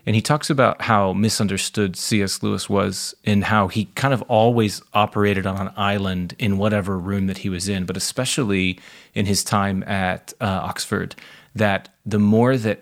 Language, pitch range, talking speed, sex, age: English, 100-110 Hz, 180 wpm, male, 30-49